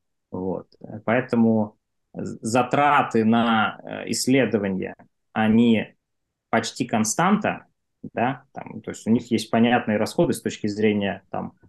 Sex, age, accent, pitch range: male, 20-39, native, 105-125 Hz